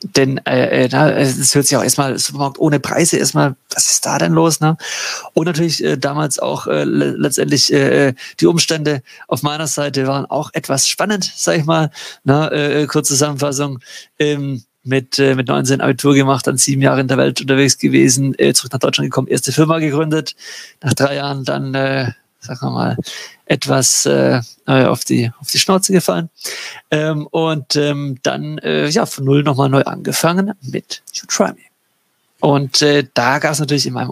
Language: German